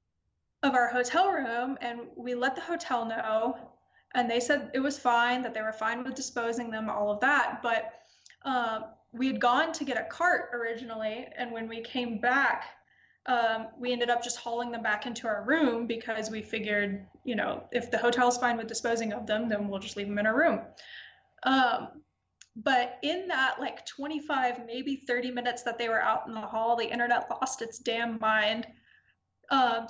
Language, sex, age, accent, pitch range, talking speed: English, female, 20-39, American, 225-270 Hz, 195 wpm